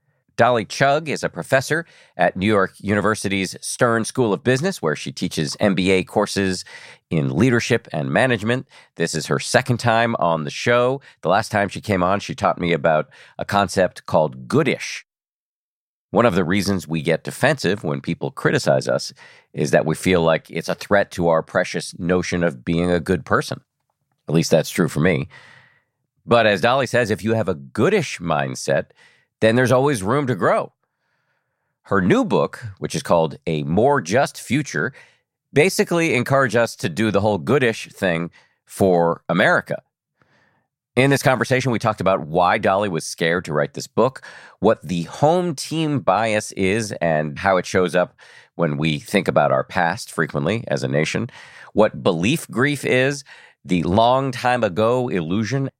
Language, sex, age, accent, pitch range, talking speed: English, male, 50-69, American, 85-125 Hz, 170 wpm